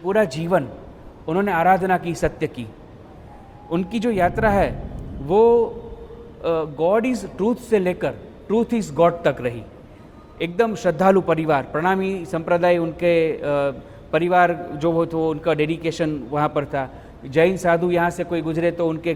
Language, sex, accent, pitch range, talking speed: English, male, Indian, 155-205 Hz, 140 wpm